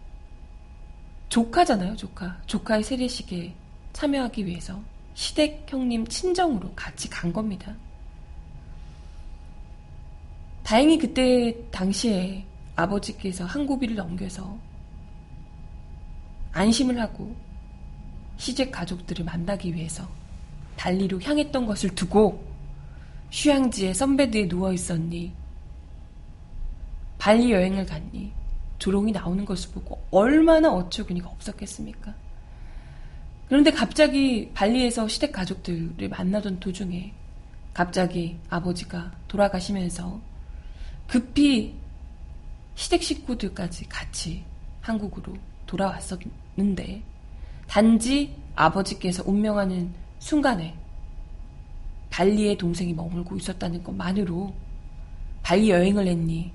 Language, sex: Korean, female